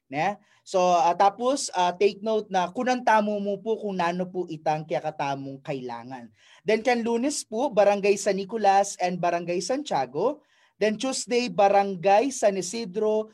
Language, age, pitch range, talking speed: Filipino, 20-39, 190-230 Hz, 155 wpm